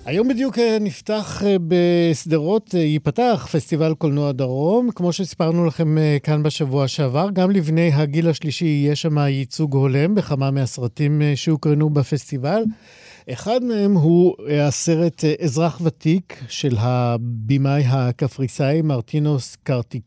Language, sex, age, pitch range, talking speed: Hebrew, male, 50-69, 140-180 Hz, 110 wpm